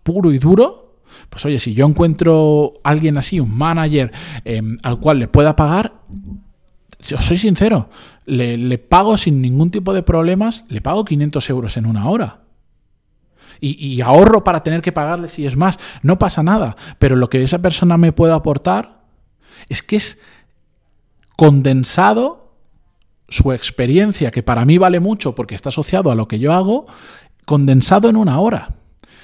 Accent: Spanish